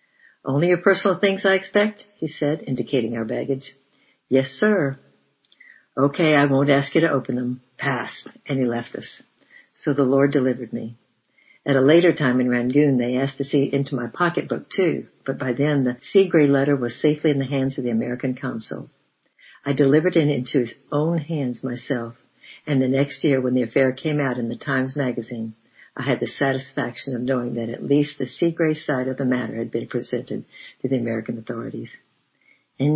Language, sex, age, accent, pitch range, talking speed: English, female, 60-79, American, 125-150 Hz, 195 wpm